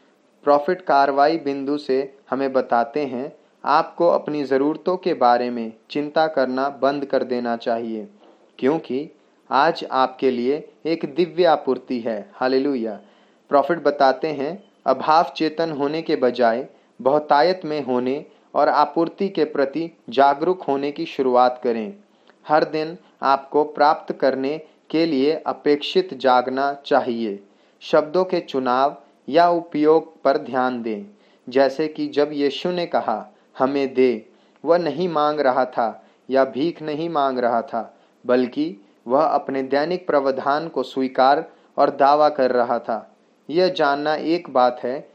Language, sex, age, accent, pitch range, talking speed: Hindi, male, 30-49, native, 130-160 Hz, 135 wpm